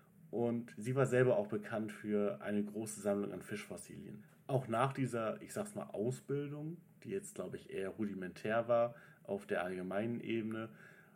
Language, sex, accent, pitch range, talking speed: German, male, German, 105-165 Hz, 160 wpm